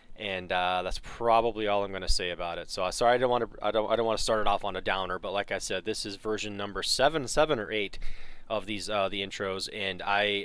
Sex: male